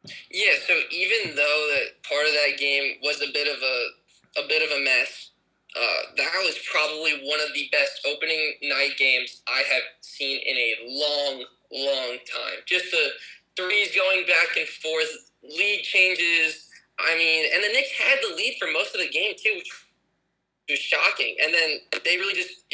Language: English